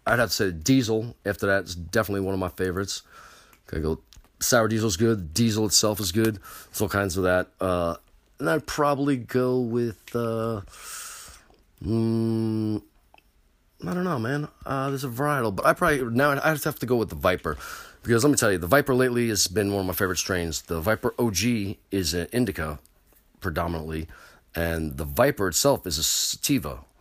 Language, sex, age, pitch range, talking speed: English, male, 40-59, 85-115 Hz, 190 wpm